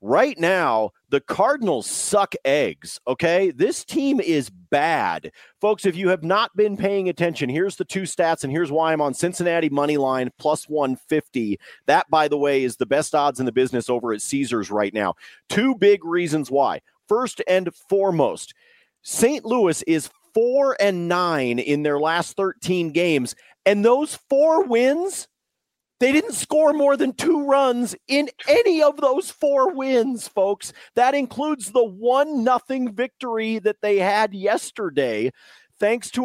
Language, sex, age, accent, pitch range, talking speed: English, male, 40-59, American, 160-245 Hz, 160 wpm